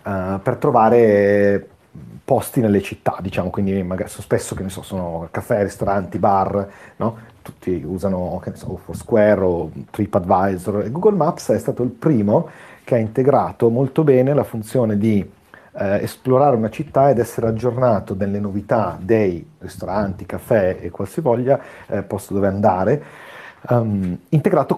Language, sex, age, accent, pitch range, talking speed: Italian, male, 40-59, native, 100-130 Hz, 150 wpm